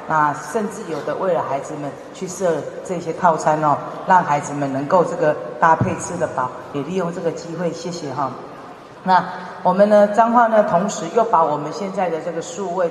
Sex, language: female, Chinese